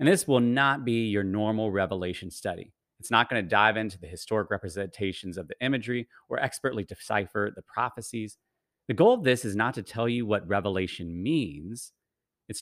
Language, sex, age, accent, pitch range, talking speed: English, male, 30-49, American, 90-125 Hz, 185 wpm